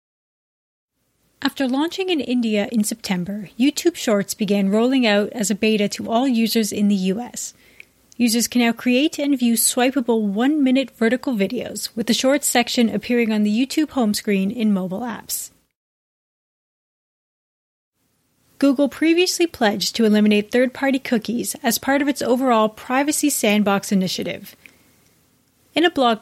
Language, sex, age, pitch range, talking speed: English, female, 30-49, 205-260 Hz, 140 wpm